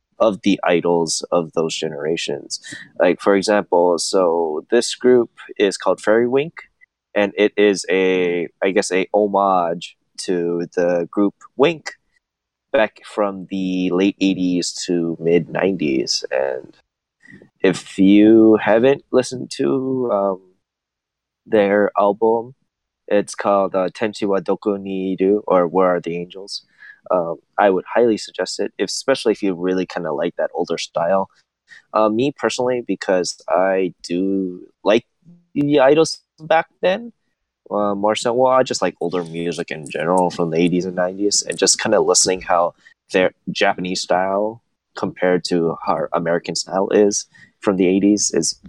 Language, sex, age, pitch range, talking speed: English, male, 20-39, 90-115 Hz, 150 wpm